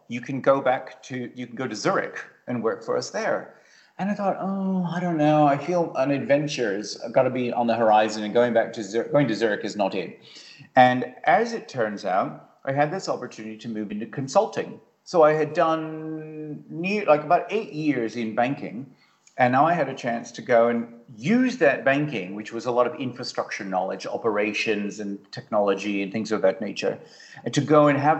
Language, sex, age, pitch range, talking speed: English, male, 40-59, 115-150 Hz, 210 wpm